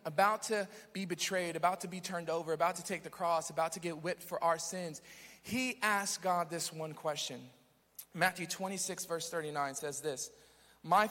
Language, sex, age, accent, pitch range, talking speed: English, male, 40-59, American, 160-210 Hz, 185 wpm